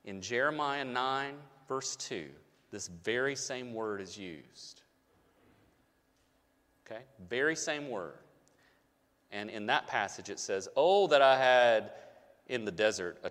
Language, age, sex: English, 40-59, male